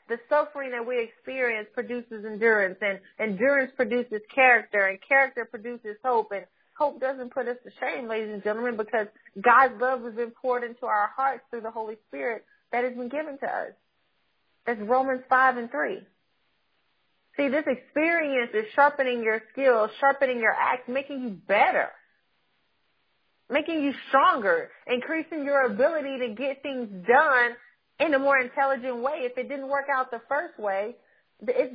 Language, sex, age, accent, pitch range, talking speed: English, female, 30-49, American, 235-280 Hz, 165 wpm